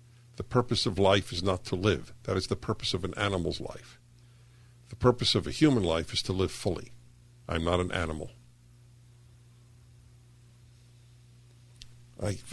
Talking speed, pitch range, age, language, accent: 150 wpm, 100-120 Hz, 60-79, English, American